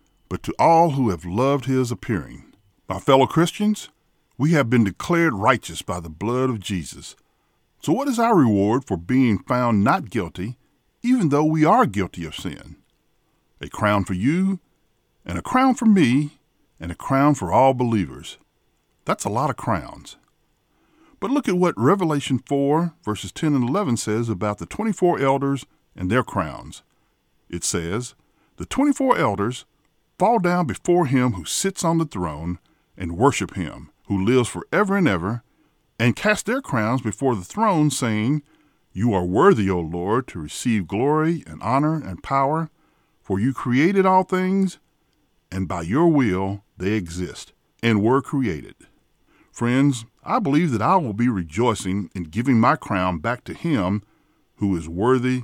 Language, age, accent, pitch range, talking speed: English, 50-69, American, 100-155 Hz, 160 wpm